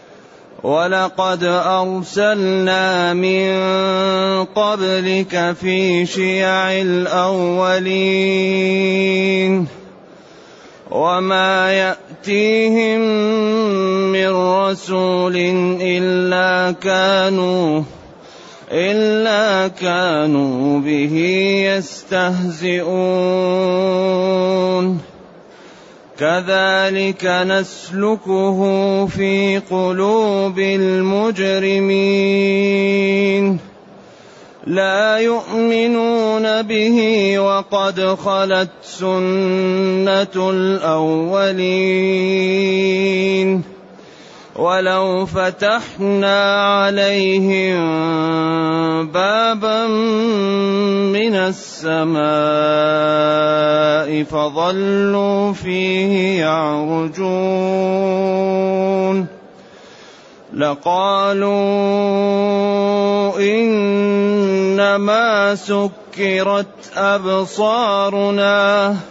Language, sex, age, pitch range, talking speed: Arabic, male, 30-49, 185-200 Hz, 35 wpm